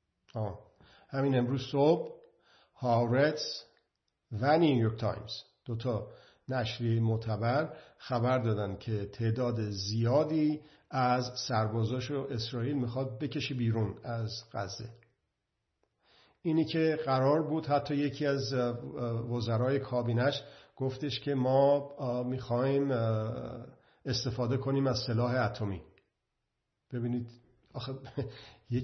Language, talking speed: Persian, 90 wpm